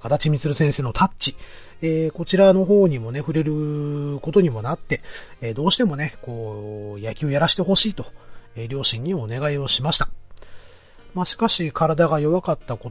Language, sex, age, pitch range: Japanese, male, 40-59, 110-165 Hz